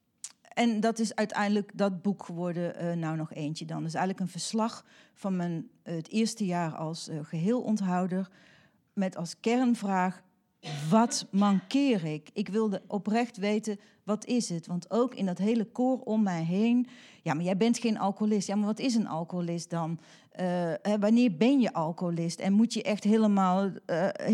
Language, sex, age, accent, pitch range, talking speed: Dutch, female, 40-59, Dutch, 170-225 Hz, 180 wpm